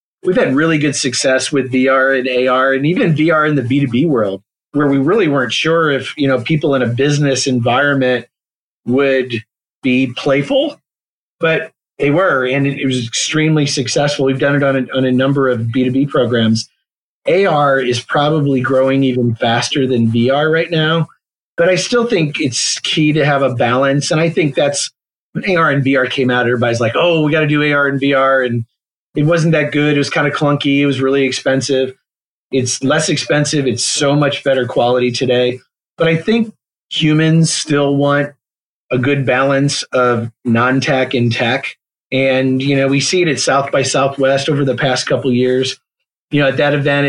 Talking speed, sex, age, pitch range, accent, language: 185 wpm, male, 40-59, 130-145 Hz, American, English